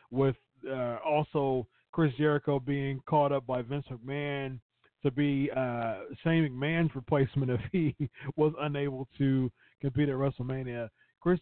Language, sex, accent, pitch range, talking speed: English, male, American, 125-155 Hz, 135 wpm